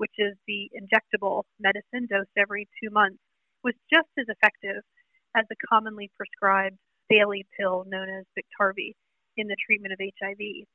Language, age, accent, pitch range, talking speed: English, 30-49, American, 200-240 Hz, 150 wpm